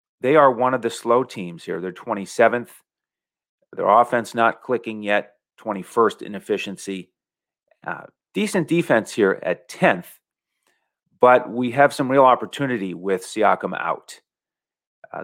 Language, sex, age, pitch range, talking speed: English, male, 40-59, 95-125 Hz, 130 wpm